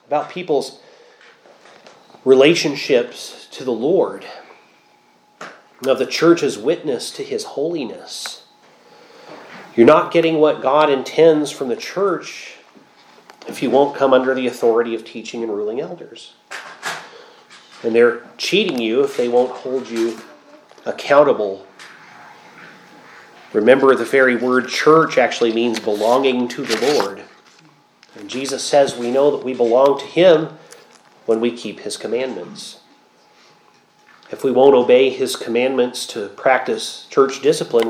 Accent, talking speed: American, 125 wpm